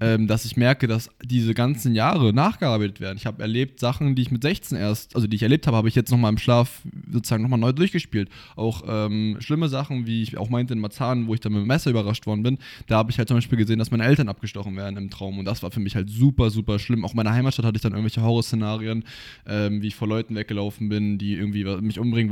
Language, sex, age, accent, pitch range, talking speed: German, male, 20-39, German, 105-120 Hz, 255 wpm